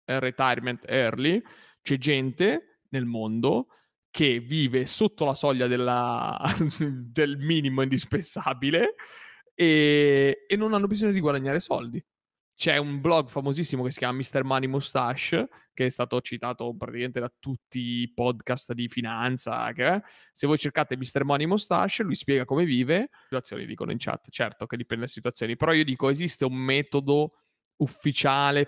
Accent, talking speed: native, 150 wpm